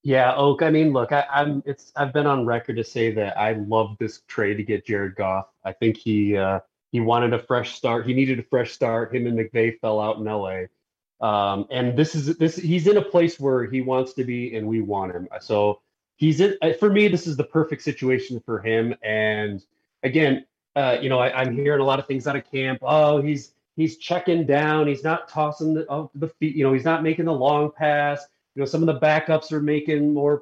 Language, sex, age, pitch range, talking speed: English, male, 30-49, 120-160 Hz, 230 wpm